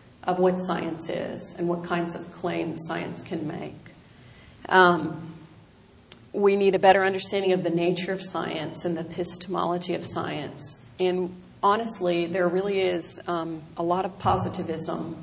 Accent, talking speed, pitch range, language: American, 150 wpm, 170-190 Hz, English